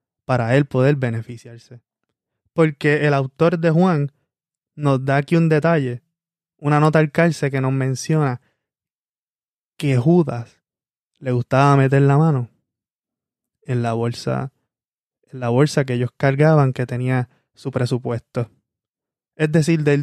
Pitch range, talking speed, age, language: 130-155 Hz, 130 wpm, 20-39, Spanish